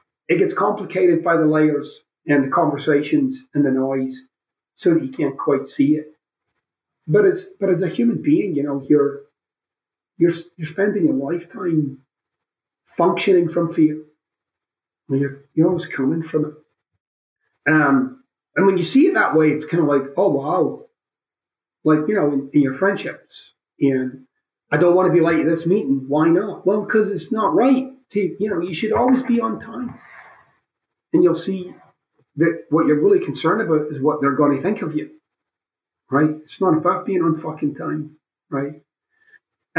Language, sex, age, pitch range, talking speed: English, male, 30-49, 145-190 Hz, 175 wpm